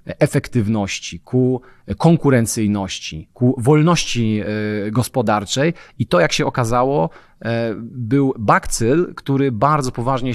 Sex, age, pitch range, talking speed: male, 30-49, 110-140 Hz, 95 wpm